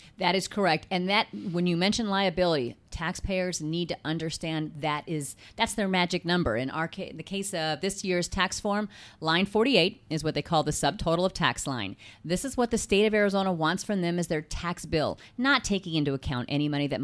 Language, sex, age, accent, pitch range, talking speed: English, female, 30-49, American, 160-210 Hz, 210 wpm